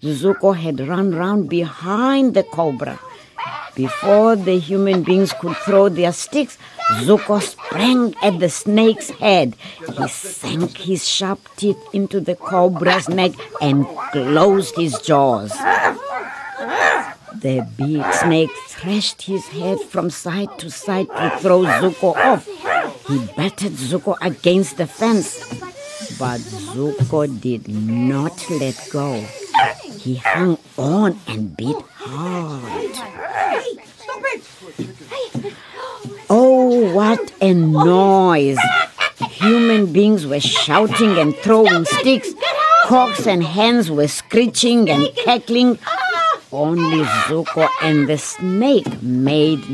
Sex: female